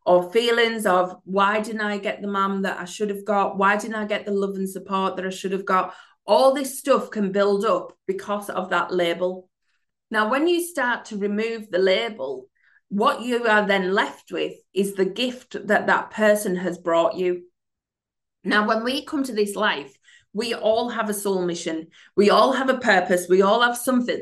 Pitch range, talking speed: 195-245 Hz, 205 wpm